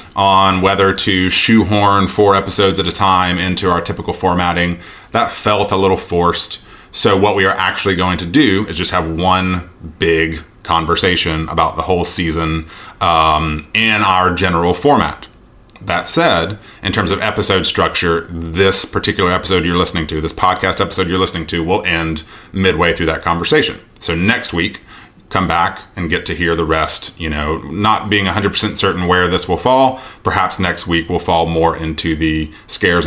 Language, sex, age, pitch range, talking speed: English, male, 30-49, 80-105 Hz, 175 wpm